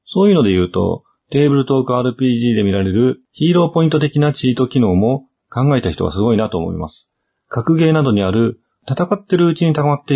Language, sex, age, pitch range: Japanese, male, 40-59, 105-155 Hz